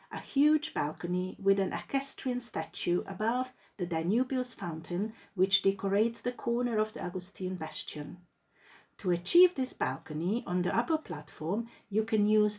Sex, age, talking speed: female, 50-69, 145 wpm